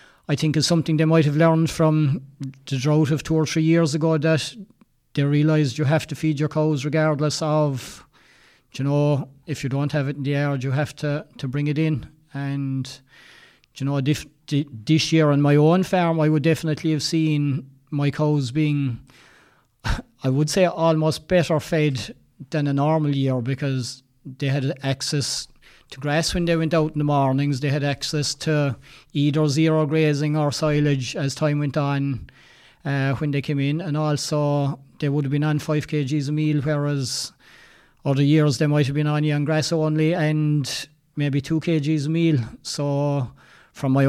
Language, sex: English, male